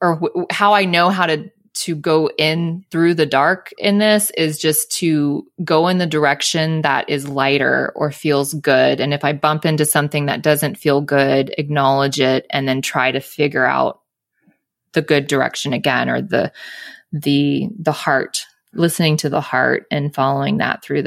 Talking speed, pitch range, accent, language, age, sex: 180 wpm, 150-180 Hz, American, English, 20-39, female